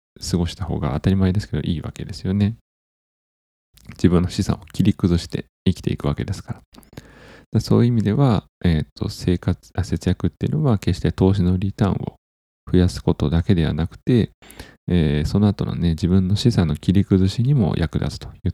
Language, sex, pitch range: Japanese, male, 85-110 Hz